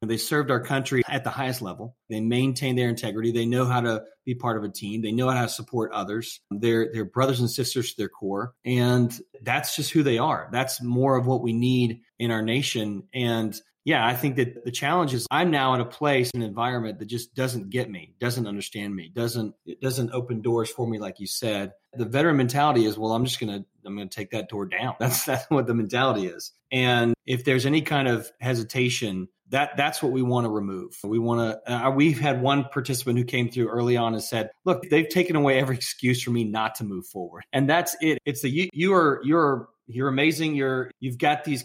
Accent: American